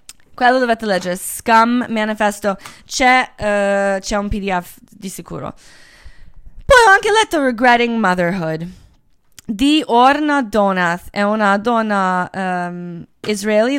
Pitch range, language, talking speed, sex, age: 185-220 Hz, Italian, 115 wpm, female, 20-39